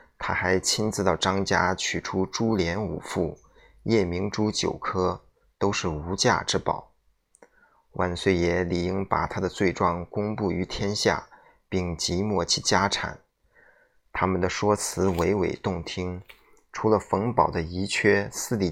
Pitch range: 85-100 Hz